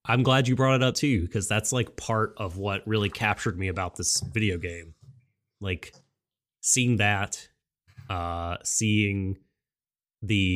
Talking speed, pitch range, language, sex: 150 wpm, 95-115 Hz, English, male